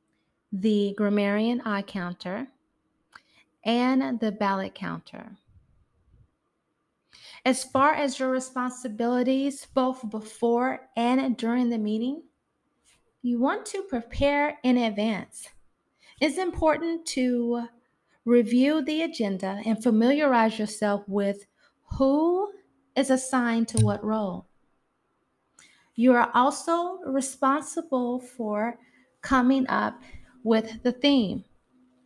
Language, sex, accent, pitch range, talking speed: English, female, American, 220-270 Hz, 95 wpm